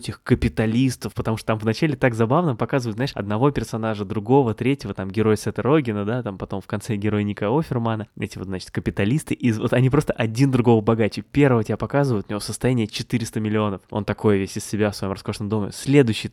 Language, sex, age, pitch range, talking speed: Russian, male, 20-39, 105-125 Hz, 200 wpm